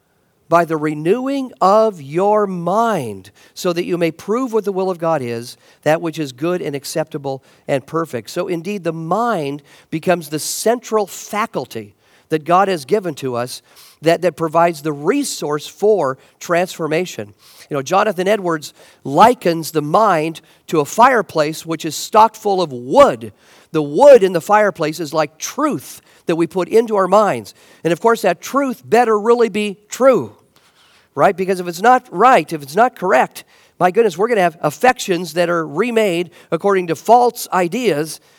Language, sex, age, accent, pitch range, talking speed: English, male, 50-69, American, 155-215 Hz, 170 wpm